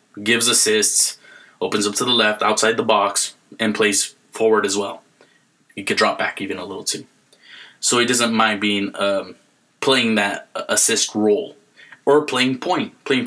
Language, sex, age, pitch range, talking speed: English, male, 20-39, 110-135 Hz, 165 wpm